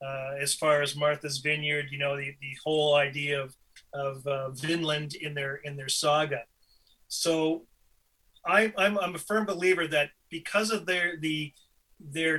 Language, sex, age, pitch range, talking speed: English, male, 30-49, 140-165 Hz, 165 wpm